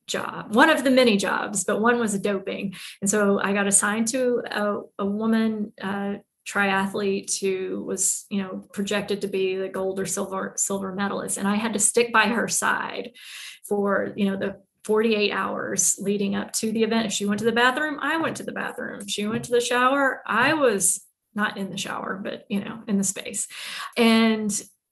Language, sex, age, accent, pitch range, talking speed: English, female, 20-39, American, 200-245 Hz, 200 wpm